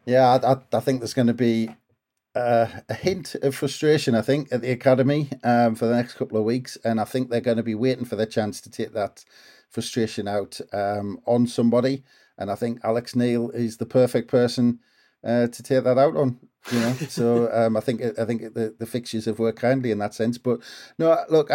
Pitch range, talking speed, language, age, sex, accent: 110-130 Hz, 220 wpm, English, 40-59, male, British